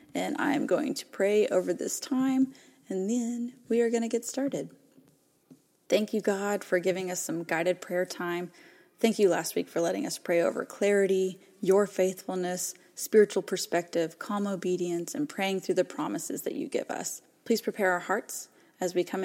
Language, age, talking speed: English, 20-39, 180 wpm